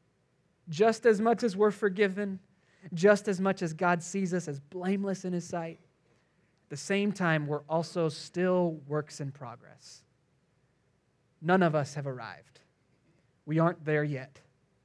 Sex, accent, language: male, American, English